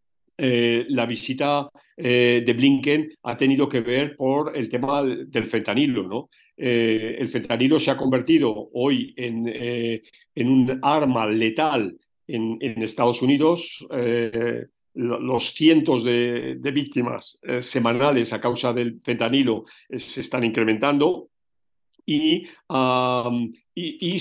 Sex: male